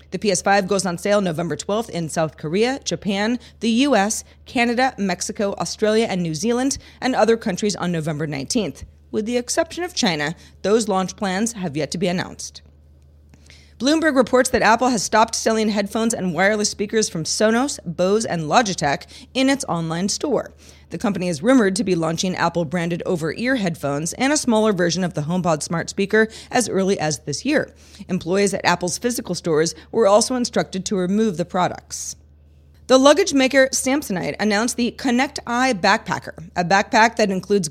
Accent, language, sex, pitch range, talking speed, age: American, English, female, 175-235 Hz, 170 wpm, 30-49